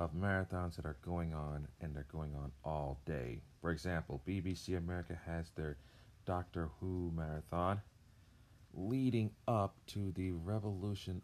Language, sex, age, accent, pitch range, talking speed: English, male, 40-59, American, 85-110 Hz, 140 wpm